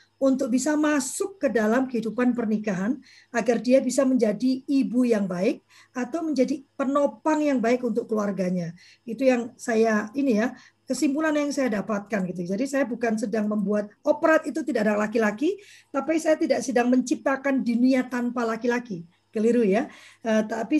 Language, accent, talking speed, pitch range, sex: Indonesian, native, 155 wpm, 220-275 Hz, female